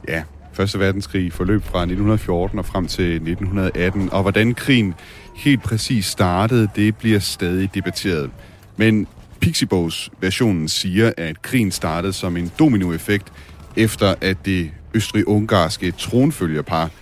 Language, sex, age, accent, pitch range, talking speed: Danish, male, 30-49, native, 85-110 Hz, 120 wpm